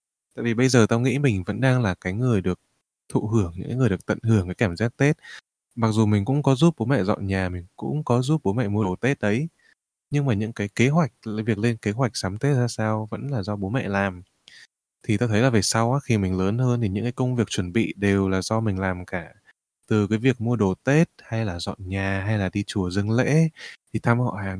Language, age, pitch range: Vietnamese, 20-39, 100-125 Hz